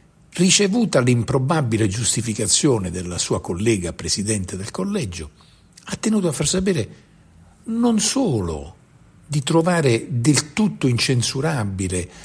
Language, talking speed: Italian, 105 wpm